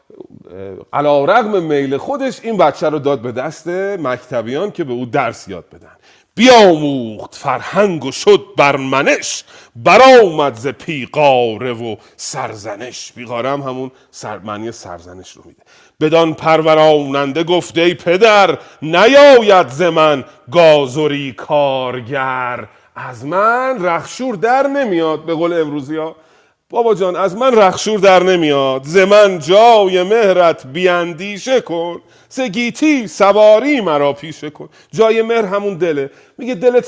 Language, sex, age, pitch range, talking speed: Persian, male, 40-59, 140-205 Hz, 125 wpm